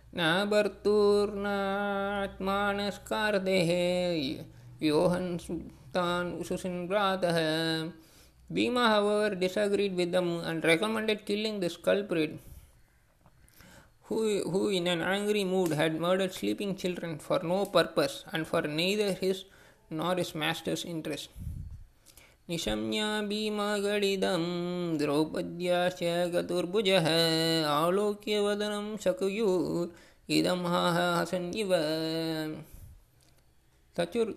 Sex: male